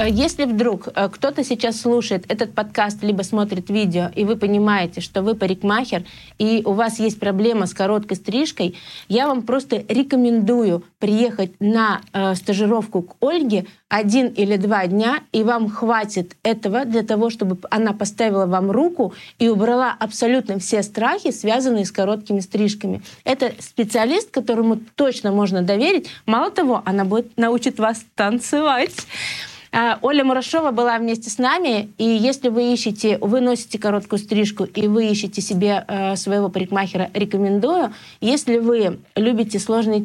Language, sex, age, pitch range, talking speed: Russian, female, 20-39, 200-235 Hz, 145 wpm